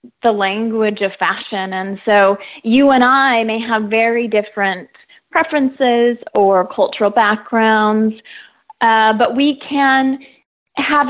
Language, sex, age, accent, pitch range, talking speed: English, female, 30-49, American, 210-260 Hz, 120 wpm